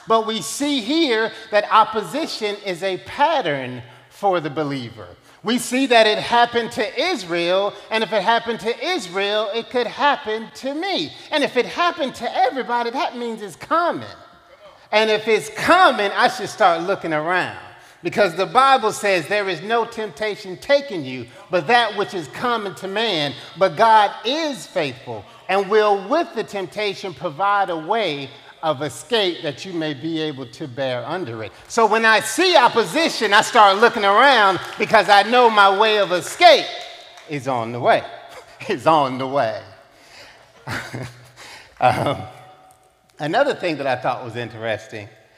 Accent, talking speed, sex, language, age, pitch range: American, 160 wpm, male, English, 30-49, 180-245 Hz